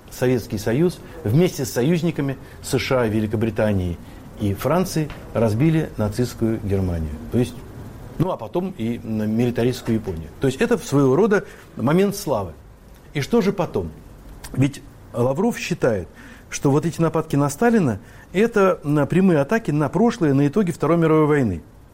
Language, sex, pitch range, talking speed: Russian, male, 115-160 Hz, 130 wpm